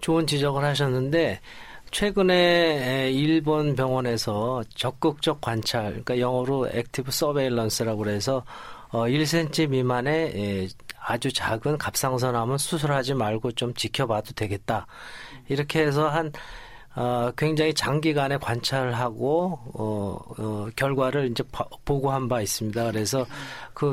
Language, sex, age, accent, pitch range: Korean, male, 40-59, native, 115-145 Hz